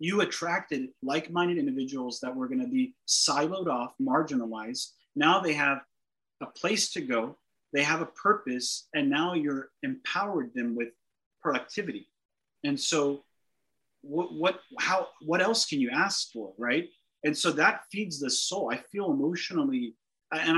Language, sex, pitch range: English, male, 140-210 Hz